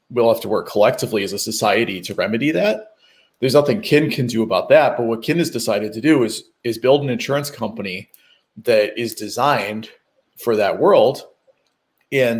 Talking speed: 185 wpm